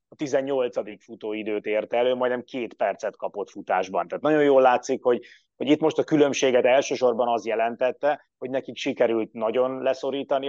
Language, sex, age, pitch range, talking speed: Hungarian, male, 30-49, 115-135 Hz, 160 wpm